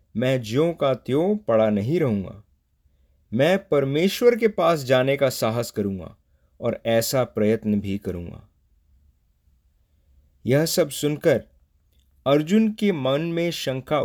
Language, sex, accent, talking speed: English, male, Indian, 120 wpm